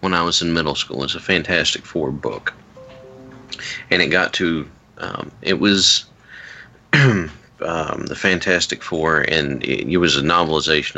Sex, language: male, English